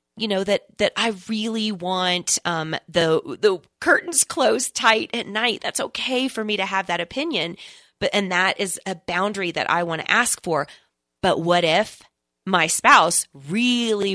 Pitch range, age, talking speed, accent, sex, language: 175-240 Hz, 30-49, 175 wpm, American, female, English